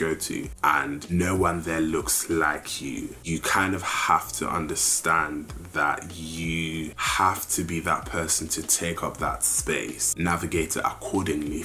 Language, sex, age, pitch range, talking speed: English, male, 20-39, 80-90 Hz, 155 wpm